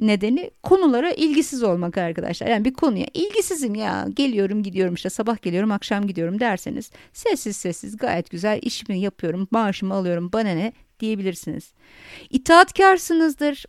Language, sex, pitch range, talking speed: Turkish, female, 190-280 Hz, 130 wpm